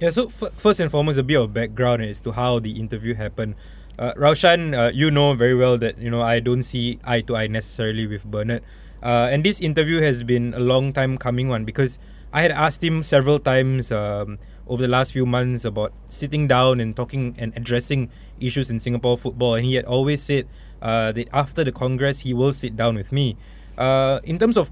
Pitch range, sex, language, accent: 120-150 Hz, male, English, Malaysian